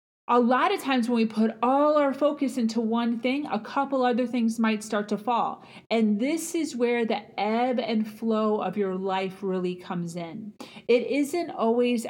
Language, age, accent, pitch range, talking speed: English, 30-49, American, 210-265 Hz, 190 wpm